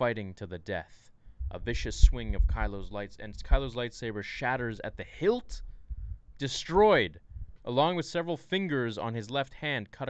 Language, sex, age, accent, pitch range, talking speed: English, male, 20-39, American, 95-125 Hz, 160 wpm